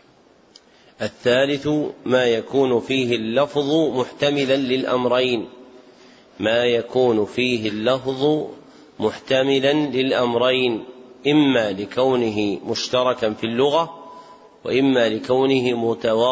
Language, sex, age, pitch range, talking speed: Arabic, male, 40-59, 115-135 Hz, 65 wpm